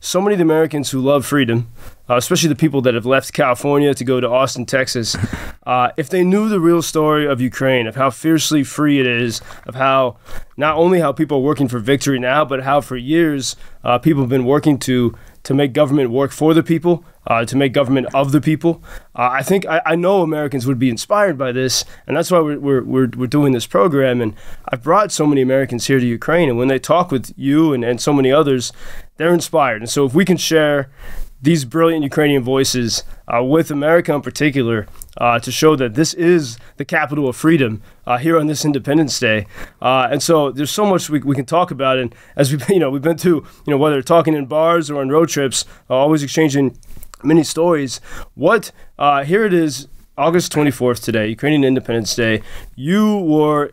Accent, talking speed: American, 215 wpm